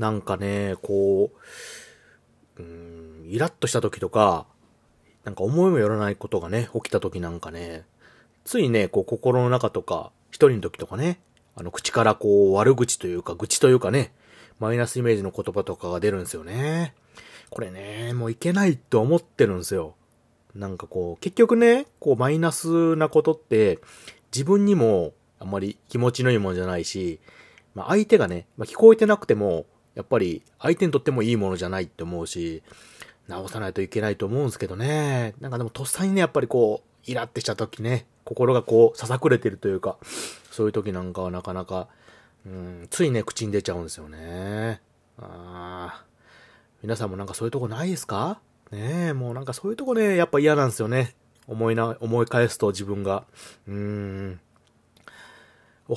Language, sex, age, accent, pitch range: Japanese, male, 30-49, native, 95-135 Hz